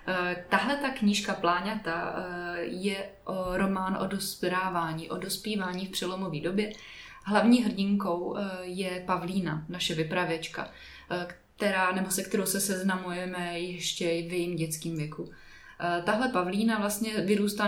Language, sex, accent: Czech, female, native